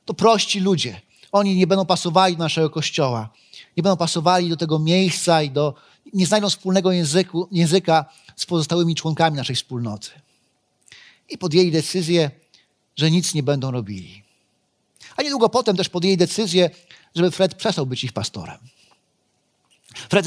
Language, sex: Polish, male